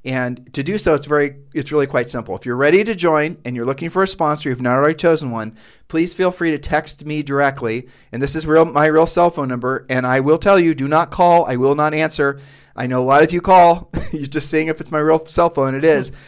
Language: English